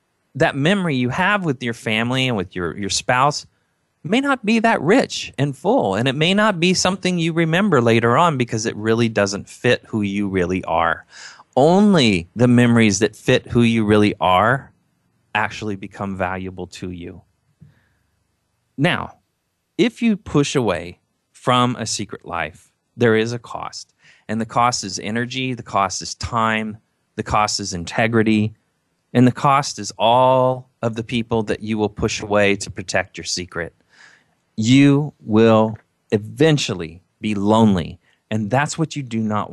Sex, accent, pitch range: male, American, 105-140 Hz